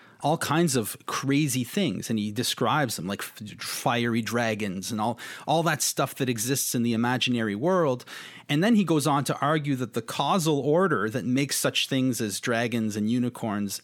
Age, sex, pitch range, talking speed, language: 30-49, male, 115-150 Hz, 180 wpm, English